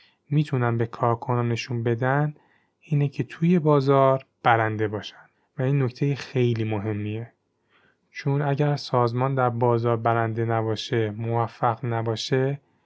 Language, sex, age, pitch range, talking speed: Persian, male, 30-49, 115-140 Hz, 110 wpm